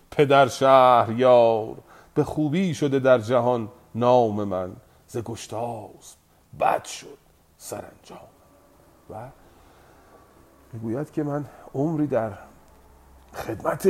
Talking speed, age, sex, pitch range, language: 90 wpm, 40-59, male, 100-155 Hz, Persian